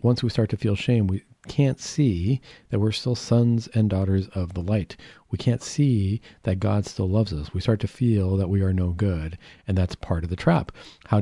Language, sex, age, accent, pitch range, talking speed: English, male, 40-59, American, 100-130 Hz, 225 wpm